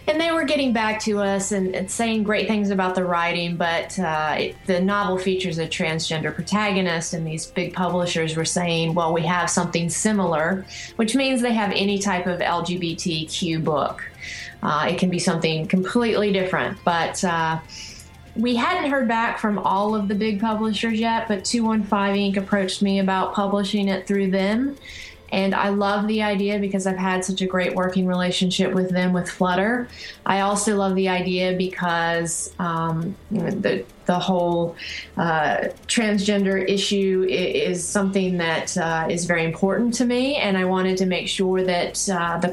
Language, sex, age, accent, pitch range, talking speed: English, female, 30-49, American, 175-205 Hz, 175 wpm